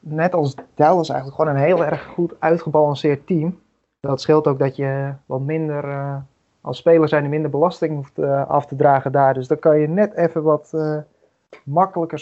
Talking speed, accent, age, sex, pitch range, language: 195 wpm, Dutch, 20-39, male, 140-165 Hz, Dutch